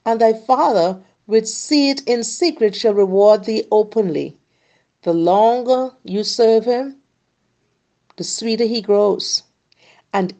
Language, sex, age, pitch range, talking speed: English, female, 50-69, 195-250 Hz, 120 wpm